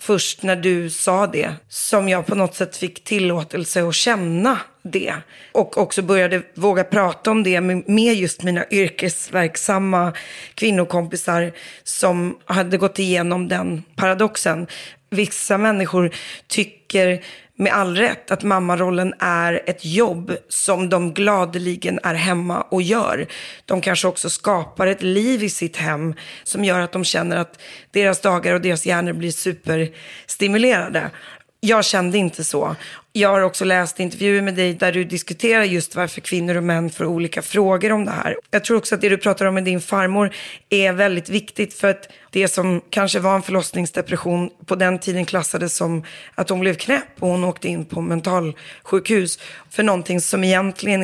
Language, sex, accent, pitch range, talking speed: English, female, Swedish, 175-205 Hz, 165 wpm